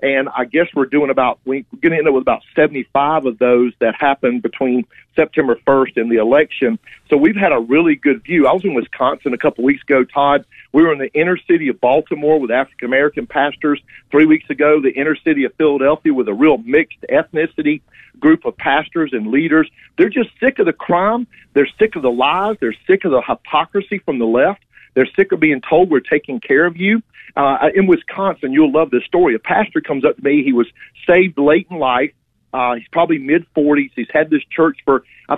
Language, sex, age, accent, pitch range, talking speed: English, male, 50-69, American, 135-195 Hz, 215 wpm